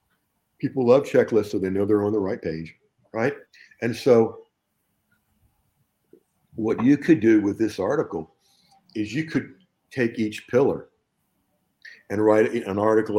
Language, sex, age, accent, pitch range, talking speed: English, male, 50-69, American, 95-110 Hz, 140 wpm